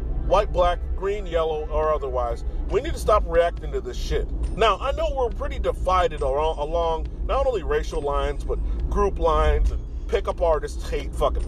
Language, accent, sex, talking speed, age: English, American, male, 175 wpm, 40-59